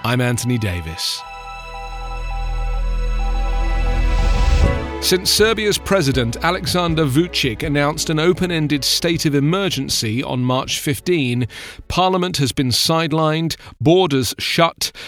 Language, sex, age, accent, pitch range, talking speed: English, male, 40-59, British, 125-165 Hz, 90 wpm